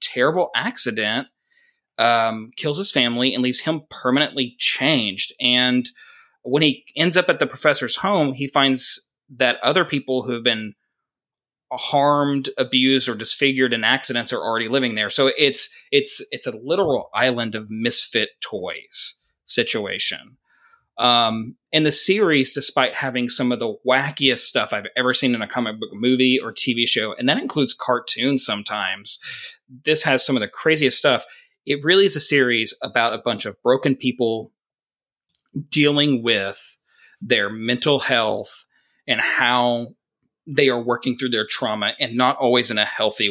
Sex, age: male, 20-39